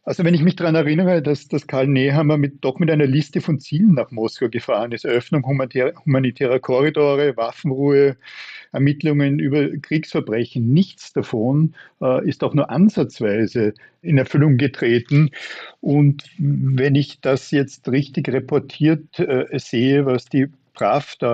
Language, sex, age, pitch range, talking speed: German, male, 60-79, 125-145 Hz, 140 wpm